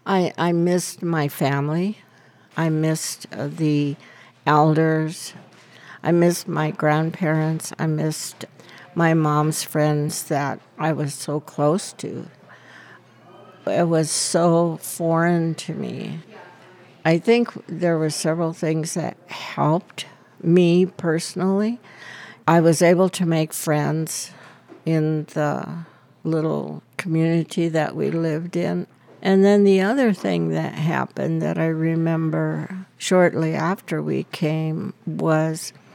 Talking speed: 115 wpm